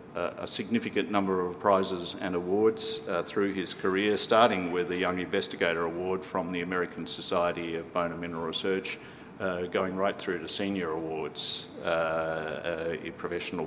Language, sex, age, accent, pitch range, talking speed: English, male, 50-69, Australian, 85-100 Hz, 160 wpm